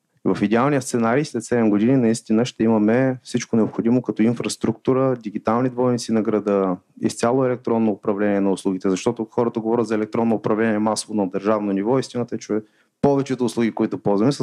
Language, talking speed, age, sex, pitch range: Bulgarian, 165 wpm, 30-49, male, 105-120 Hz